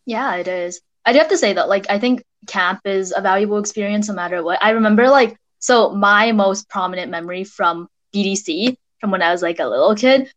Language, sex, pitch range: English, female, 190-230 Hz